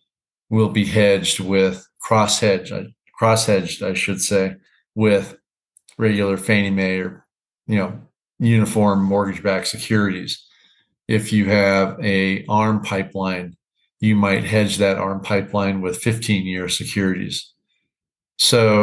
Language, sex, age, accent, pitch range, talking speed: English, male, 50-69, American, 95-110 Hz, 110 wpm